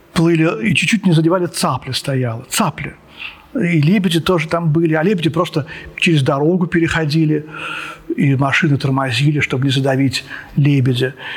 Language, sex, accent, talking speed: Russian, male, native, 135 wpm